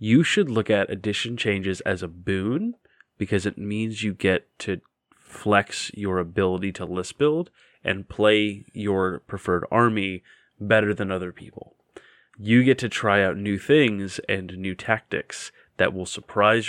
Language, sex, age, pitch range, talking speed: English, male, 20-39, 95-115 Hz, 155 wpm